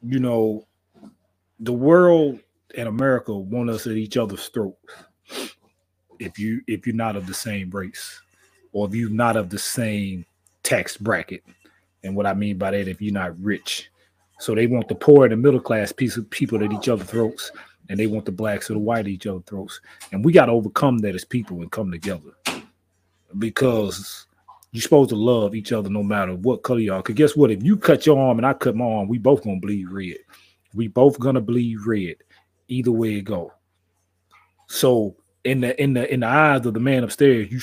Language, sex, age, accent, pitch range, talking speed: English, male, 30-49, American, 100-125 Hz, 210 wpm